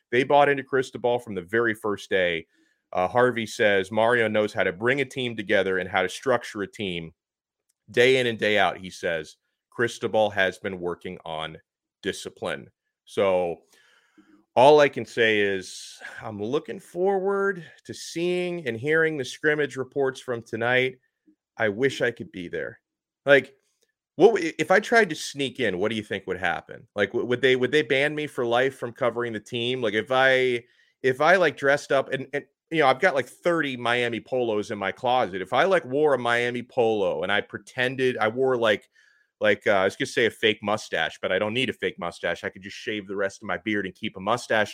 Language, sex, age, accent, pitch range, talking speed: English, male, 30-49, American, 110-145 Hz, 205 wpm